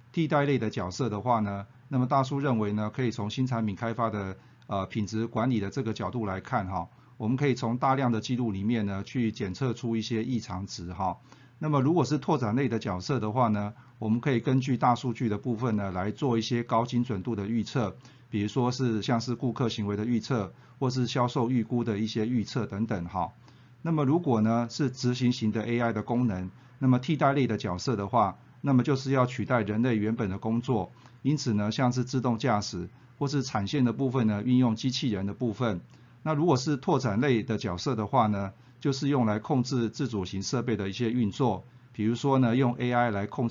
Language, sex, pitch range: Chinese, male, 110-130 Hz